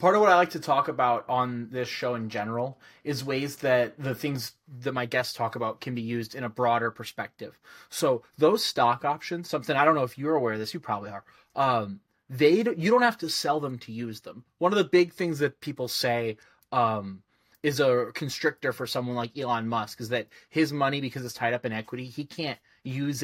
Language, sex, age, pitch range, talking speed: English, male, 20-39, 120-150 Hz, 225 wpm